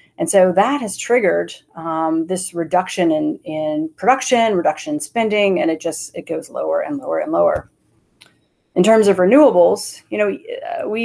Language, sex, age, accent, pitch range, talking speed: English, female, 30-49, American, 170-220 Hz, 170 wpm